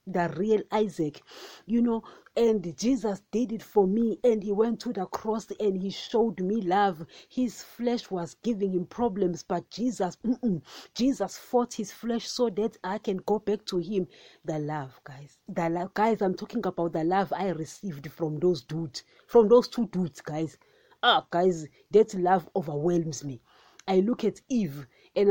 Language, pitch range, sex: English, 175-225 Hz, female